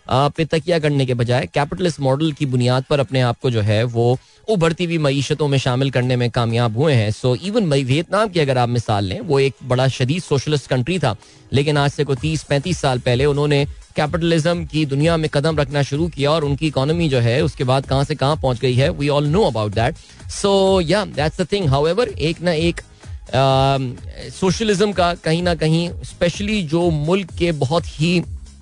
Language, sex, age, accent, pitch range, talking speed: Hindi, male, 20-39, native, 125-155 Hz, 200 wpm